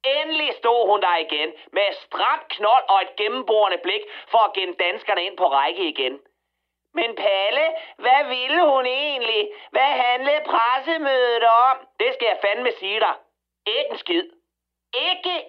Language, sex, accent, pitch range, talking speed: Danish, male, native, 215-340 Hz, 155 wpm